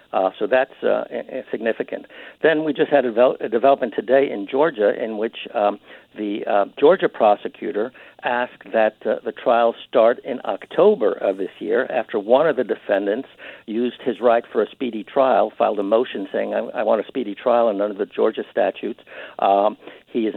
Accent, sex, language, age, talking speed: American, male, English, 60-79, 190 wpm